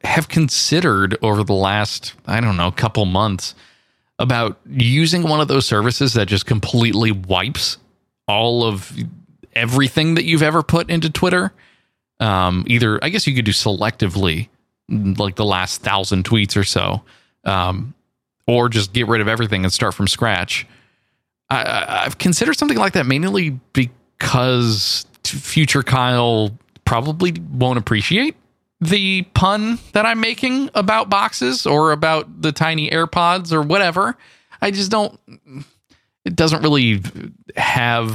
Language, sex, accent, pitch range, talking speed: English, male, American, 105-145 Hz, 140 wpm